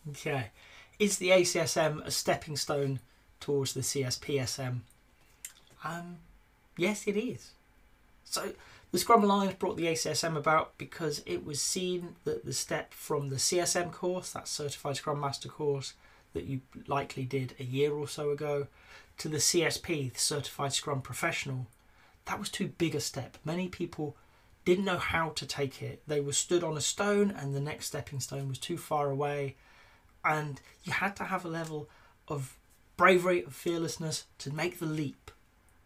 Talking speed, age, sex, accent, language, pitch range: 160 wpm, 30-49, male, British, English, 135-175 Hz